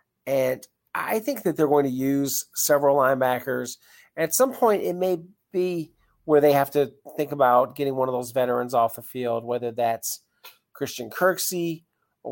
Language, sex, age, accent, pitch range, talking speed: English, male, 40-59, American, 125-155 Hz, 170 wpm